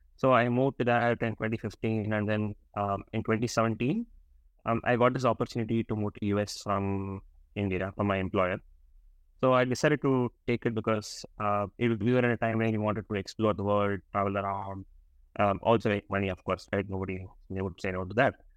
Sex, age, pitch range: male, 20-39, 95-115 Hz